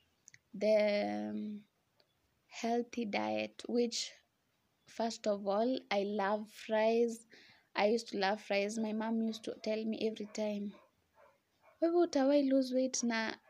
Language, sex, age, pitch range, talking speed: English, female, 20-39, 205-230 Hz, 130 wpm